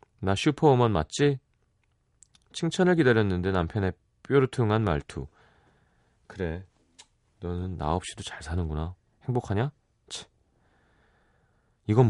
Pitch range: 90-135 Hz